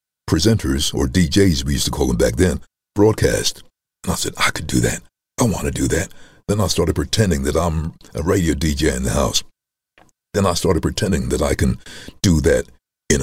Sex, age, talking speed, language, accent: male, 60-79, 205 wpm, English, American